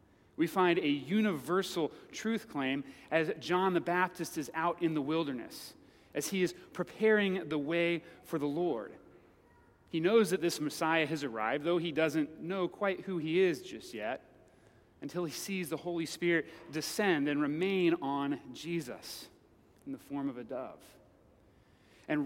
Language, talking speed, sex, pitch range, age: English, 160 wpm, male, 150-180 Hz, 30-49